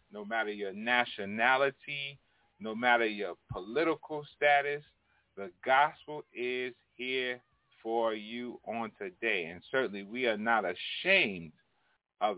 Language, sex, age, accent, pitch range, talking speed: English, male, 30-49, American, 100-145 Hz, 115 wpm